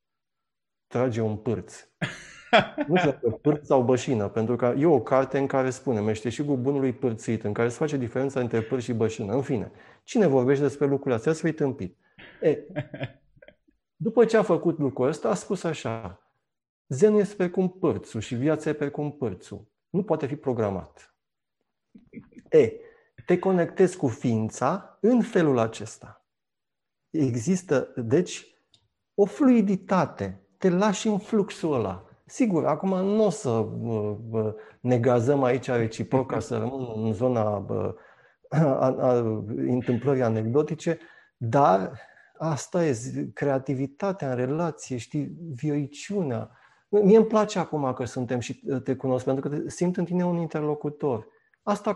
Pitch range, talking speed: 120-185 Hz, 135 wpm